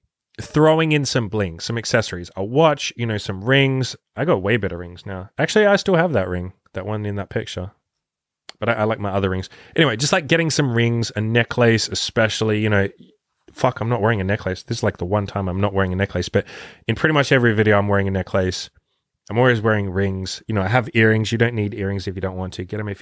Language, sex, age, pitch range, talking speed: English, male, 20-39, 100-125 Hz, 250 wpm